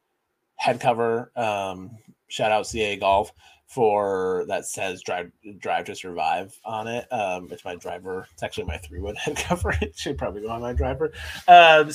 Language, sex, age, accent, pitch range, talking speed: English, male, 20-39, American, 115-150 Hz, 175 wpm